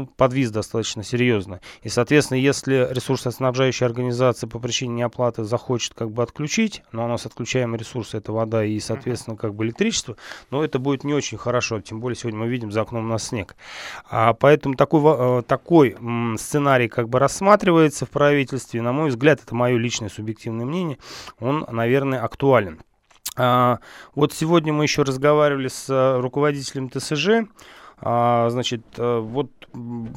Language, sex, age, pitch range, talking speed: Russian, male, 30-49, 120-140 Hz, 145 wpm